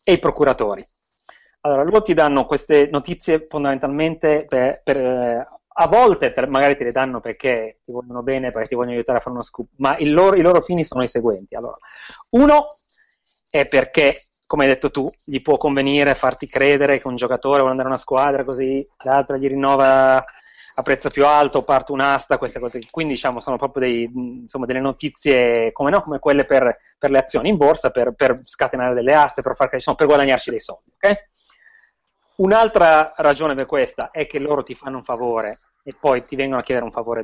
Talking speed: 195 wpm